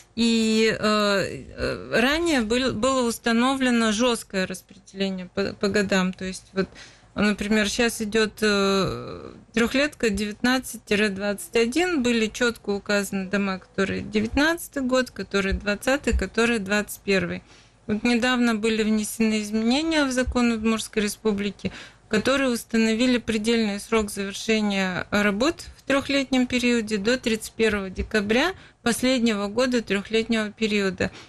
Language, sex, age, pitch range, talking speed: Russian, female, 30-49, 205-235 Hz, 110 wpm